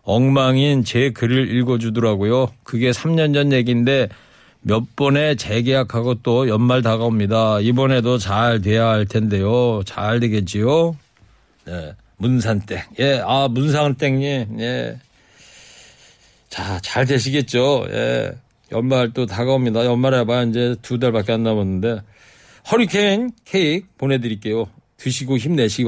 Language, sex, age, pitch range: Korean, male, 40-59, 120-165 Hz